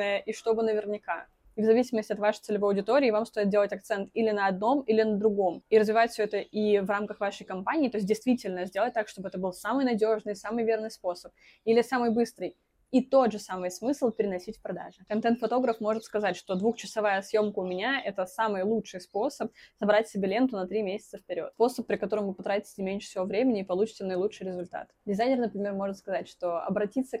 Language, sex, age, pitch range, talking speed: Russian, female, 20-39, 190-225 Hz, 200 wpm